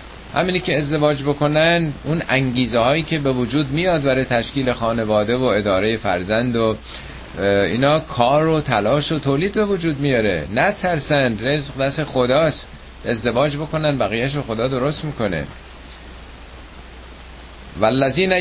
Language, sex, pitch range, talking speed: Persian, male, 100-150 Hz, 125 wpm